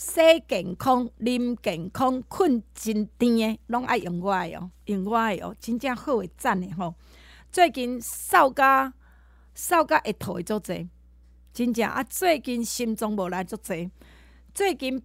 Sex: female